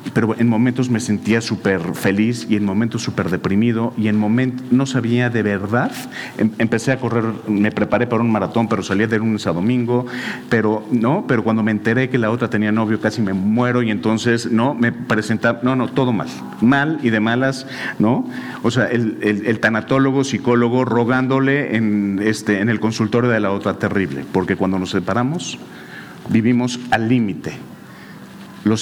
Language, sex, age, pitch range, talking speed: Spanish, male, 40-59, 105-125 Hz, 180 wpm